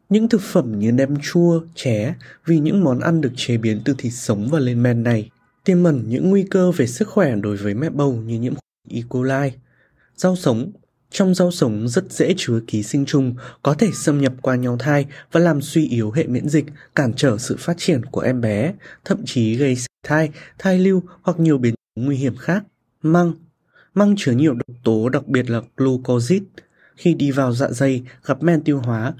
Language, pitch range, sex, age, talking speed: Vietnamese, 120-165 Hz, male, 20-39, 210 wpm